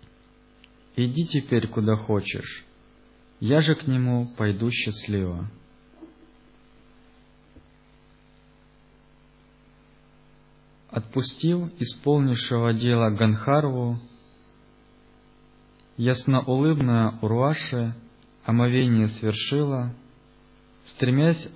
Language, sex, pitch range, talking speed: Russian, male, 95-130 Hz, 60 wpm